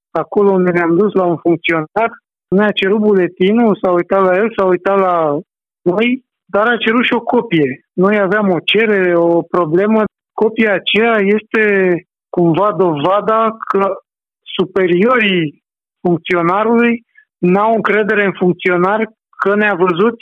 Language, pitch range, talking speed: Romanian, 180-220 Hz, 135 wpm